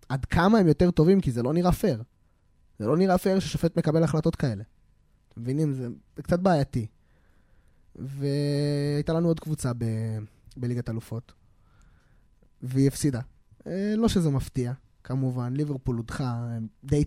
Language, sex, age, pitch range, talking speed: Hebrew, male, 20-39, 120-185 Hz, 135 wpm